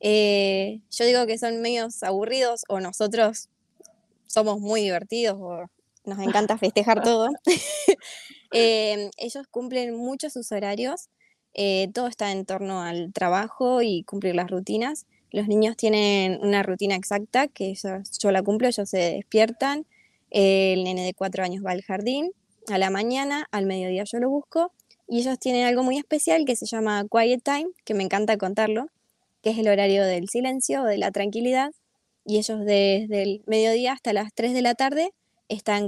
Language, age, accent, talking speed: Spanish, 20-39, Argentinian, 165 wpm